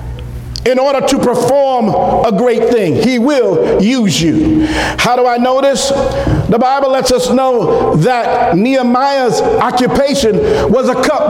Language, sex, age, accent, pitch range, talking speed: English, male, 50-69, American, 190-255 Hz, 145 wpm